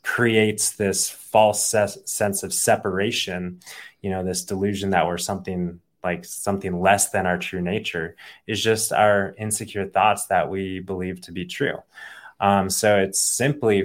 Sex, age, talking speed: male, 20-39, 150 wpm